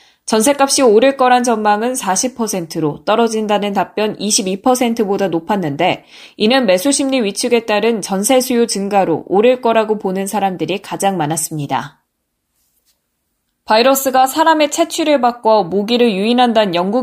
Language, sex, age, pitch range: Korean, female, 20-39, 185-245 Hz